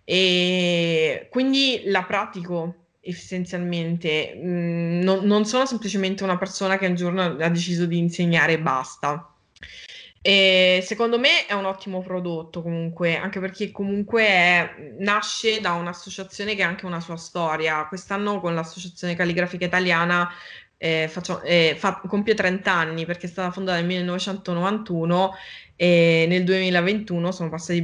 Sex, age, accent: female, 20-39, native